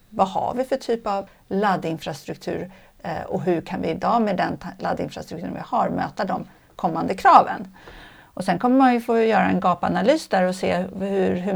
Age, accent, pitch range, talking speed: 50-69, native, 185-215 Hz, 180 wpm